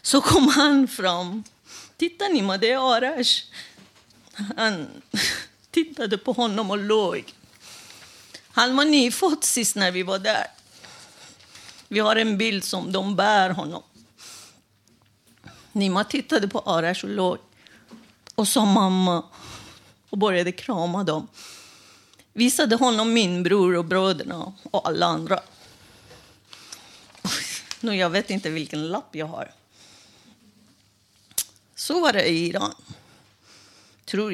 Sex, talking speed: female, 115 wpm